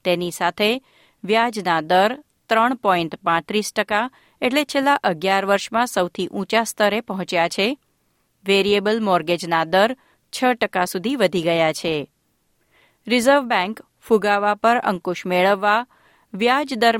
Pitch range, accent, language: 185-230 Hz, native, Gujarati